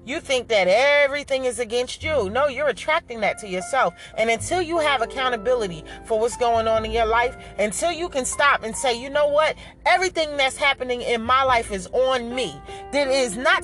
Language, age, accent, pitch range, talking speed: English, 30-49, American, 230-310 Hz, 205 wpm